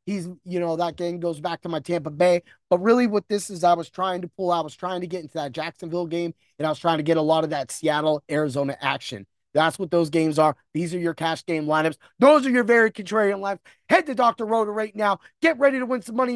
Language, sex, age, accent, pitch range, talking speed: English, male, 20-39, American, 195-300 Hz, 265 wpm